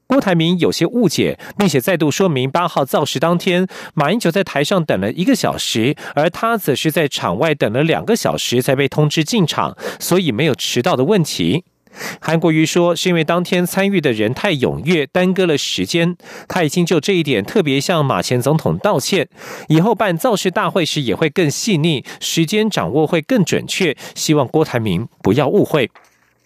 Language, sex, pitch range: German, male, 140-185 Hz